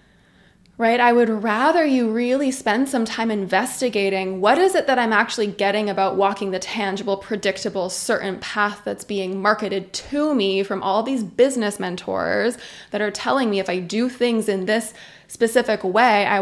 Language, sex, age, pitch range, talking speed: English, female, 20-39, 200-240 Hz, 170 wpm